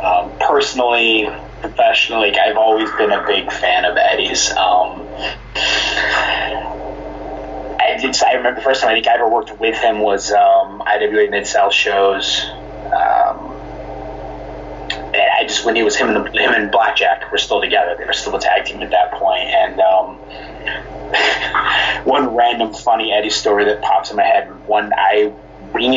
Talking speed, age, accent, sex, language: 160 wpm, 30-49, American, male, English